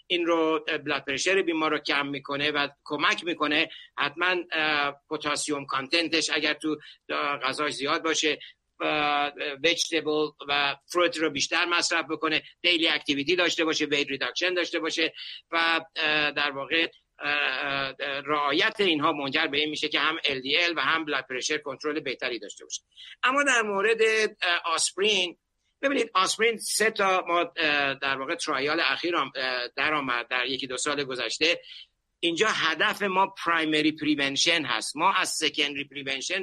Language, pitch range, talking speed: Persian, 145-185 Hz, 135 wpm